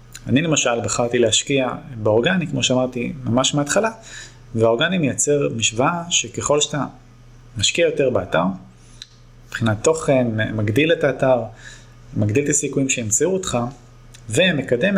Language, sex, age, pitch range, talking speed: Hebrew, male, 30-49, 120-140 Hz, 110 wpm